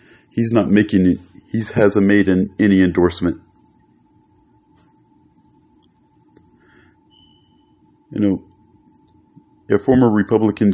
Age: 40-59